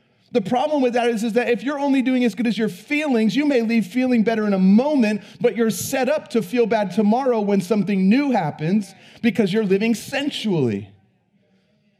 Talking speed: 200 wpm